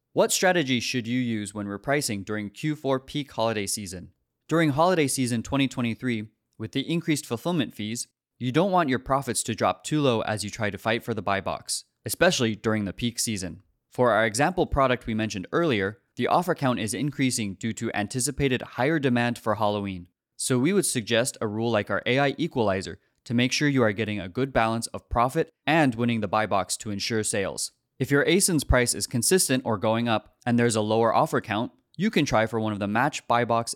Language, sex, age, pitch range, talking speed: English, male, 20-39, 105-135 Hz, 210 wpm